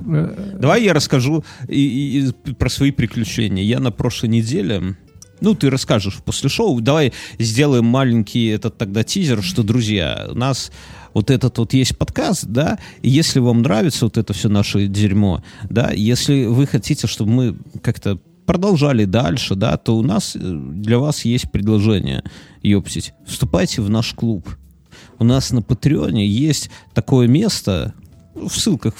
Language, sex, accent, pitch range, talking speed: Russian, male, native, 110-150 Hz, 155 wpm